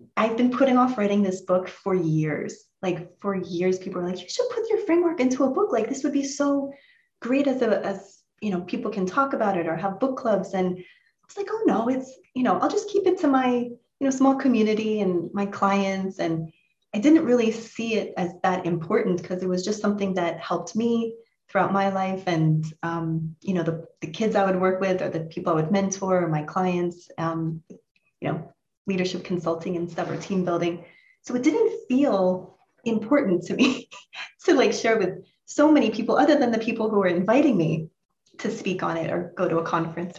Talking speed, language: 215 wpm, English